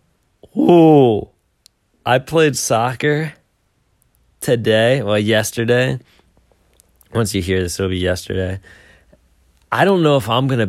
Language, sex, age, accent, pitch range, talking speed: English, male, 20-39, American, 110-150 Hz, 110 wpm